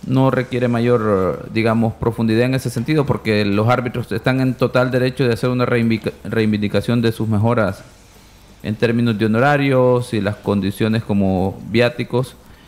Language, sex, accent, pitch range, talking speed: Spanish, male, Venezuelan, 105-120 Hz, 145 wpm